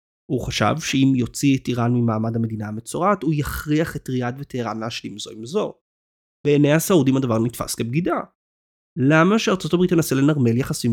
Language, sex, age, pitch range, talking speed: Hebrew, male, 30-49, 115-150 Hz, 160 wpm